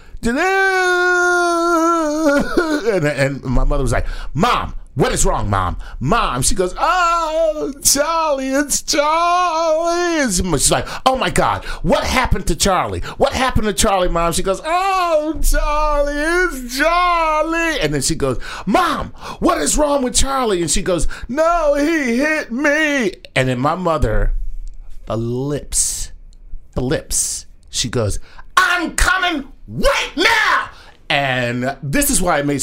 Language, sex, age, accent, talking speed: English, male, 40-59, American, 140 wpm